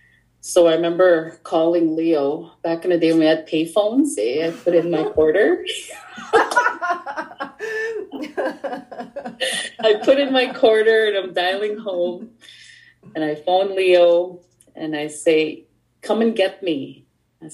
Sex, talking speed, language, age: female, 135 wpm, English, 30-49